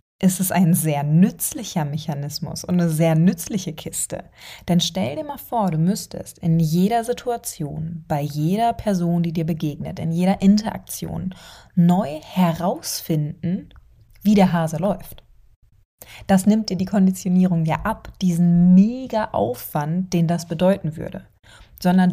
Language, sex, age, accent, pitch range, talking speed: German, female, 20-39, German, 160-190 Hz, 135 wpm